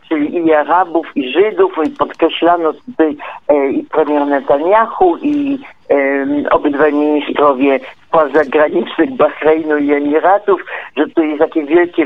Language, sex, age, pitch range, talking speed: Polish, male, 50-69, 160-215 Hz, 120 wpm